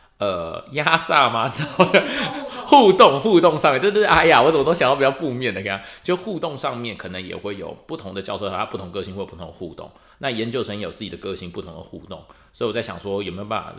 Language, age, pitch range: Chinese, 30-49, 90-120 Hz